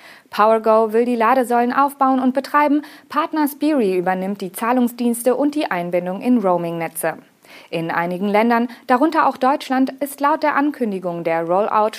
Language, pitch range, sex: German, 185-265 Hz, female